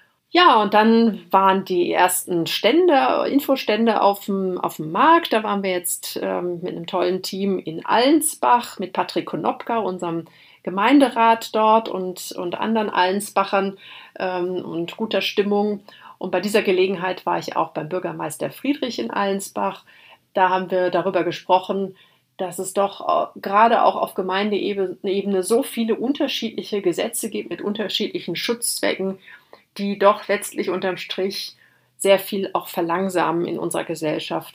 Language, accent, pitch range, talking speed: German, German, 175-210 Hz, 140 wpm